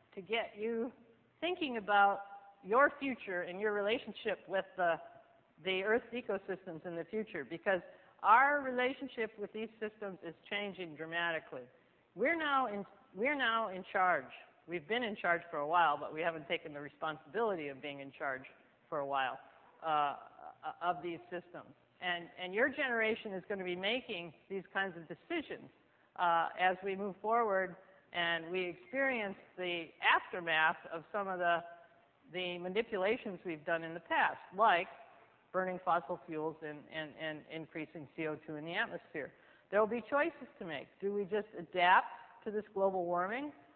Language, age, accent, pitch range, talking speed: English, 50-69, American, 170-215 Hz, 160 wpm